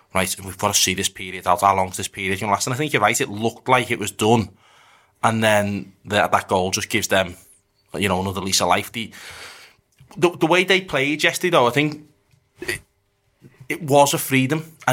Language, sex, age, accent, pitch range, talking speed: English, male, 20-39, British, 105-135 Hz, 235 wpm